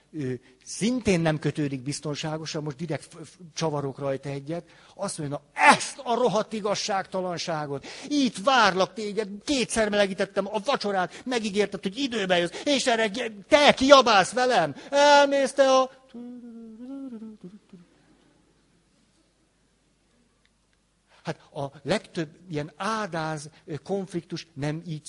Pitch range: 150-215 Hz